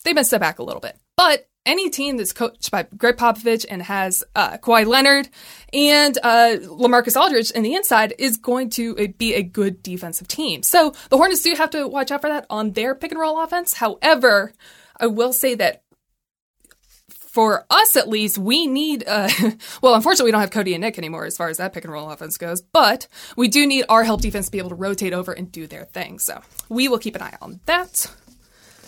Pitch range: 195-275 Hz